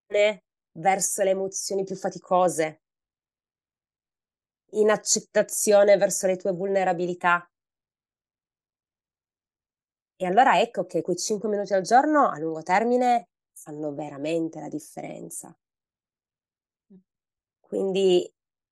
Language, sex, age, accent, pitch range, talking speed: Italian, female, 20-39, native, 165-190 Hz, 90 wpm